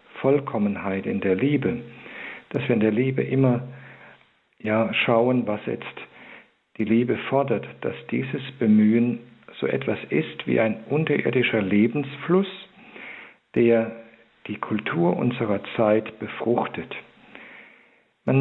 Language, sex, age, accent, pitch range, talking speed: German, male, 50-69, German, 110-130 Hz, 110 wpm